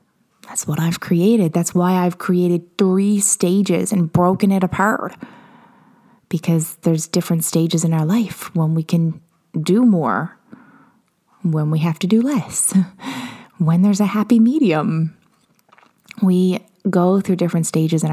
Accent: American